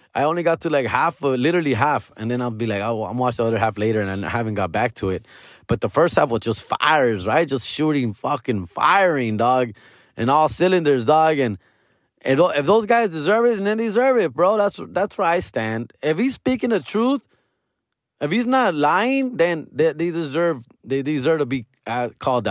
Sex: male